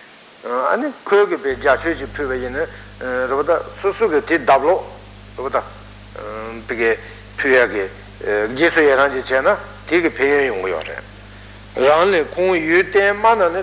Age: 60-79